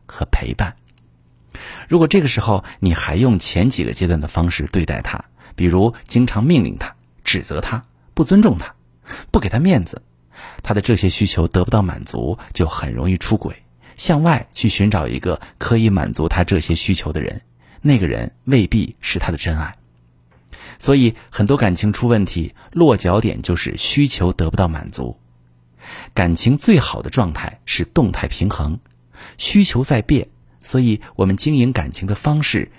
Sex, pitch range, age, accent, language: male, 80-115 Hz, 50-69, native, Chinese